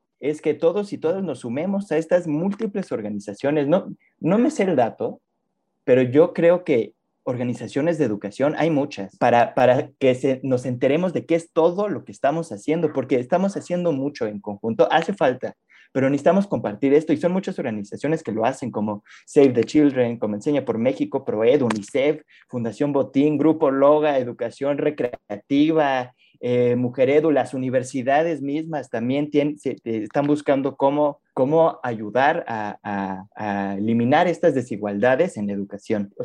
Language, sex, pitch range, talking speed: Spanish, male, 115-160 Hz, 165 wpm